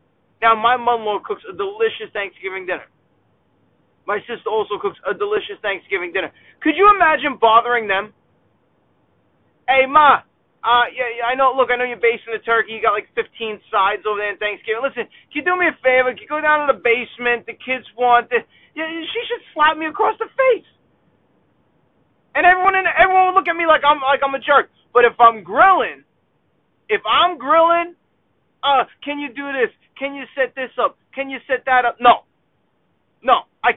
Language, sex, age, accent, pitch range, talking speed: English, male, 30-49, American, 215-295 Hz, 195 wpm